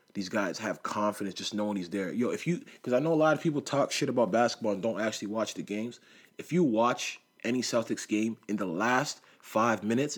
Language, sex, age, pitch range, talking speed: English, male, 30-49, 100-115 Hz, 230 wpm